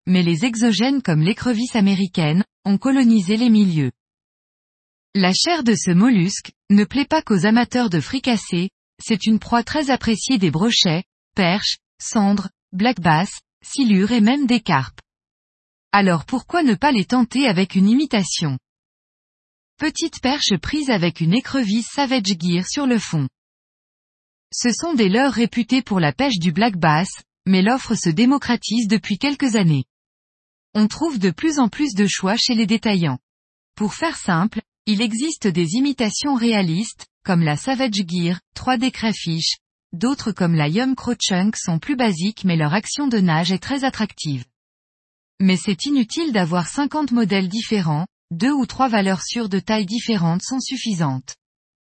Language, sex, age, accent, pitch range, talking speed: French, female, 20-39, French, 185-250 Hz, 155 wpm